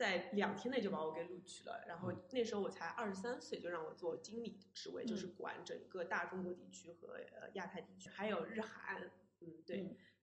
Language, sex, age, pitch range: Chinese, female, 20-39, 180-235 Hz